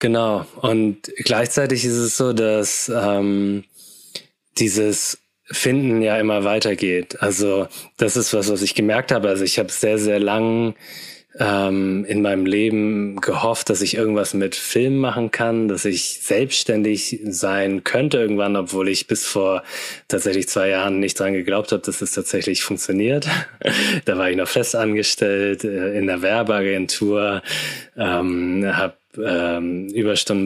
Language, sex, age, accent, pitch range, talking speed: German, male, 20-39, German, 95-110 Hz, 150 wpm